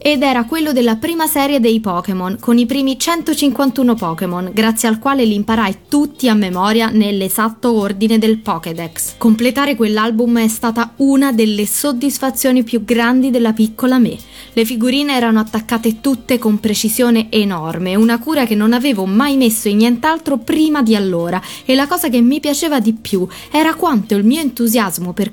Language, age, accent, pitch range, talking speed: Italian, 20-39, native, 205-270 Hz, 170 wpm